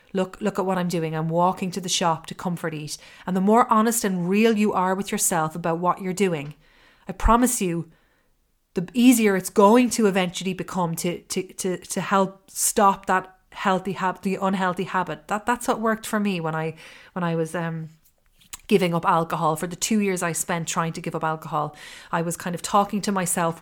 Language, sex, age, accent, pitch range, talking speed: English, female, 30-49, Irish, 165-195 Hz, 210 wpm